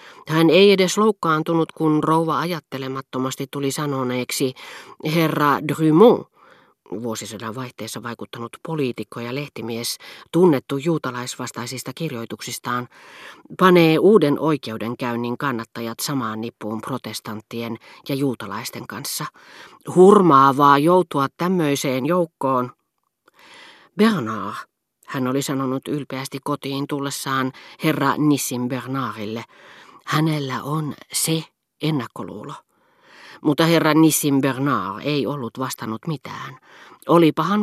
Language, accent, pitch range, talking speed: Finnish, native, 125-155 Hz, 90 wpm